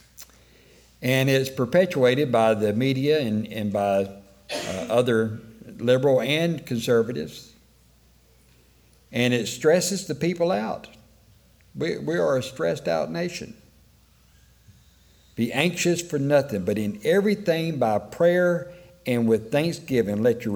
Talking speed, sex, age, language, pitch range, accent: 120 wpm, male, 60-79, English, 115-160 Hz, American